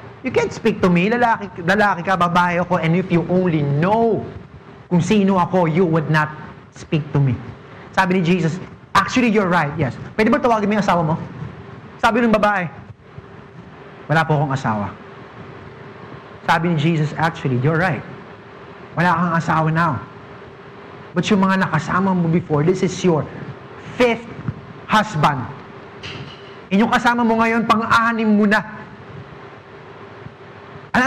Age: 30-49